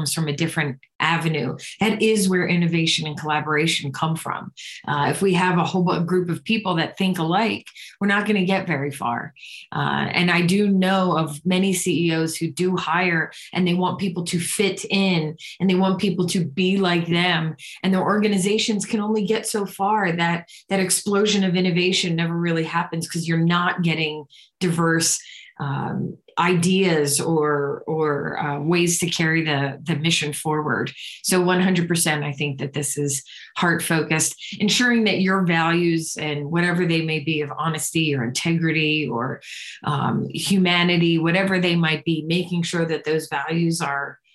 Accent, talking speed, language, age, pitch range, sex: American, 170 wpm, English, 30-49, 160-185 Hz, female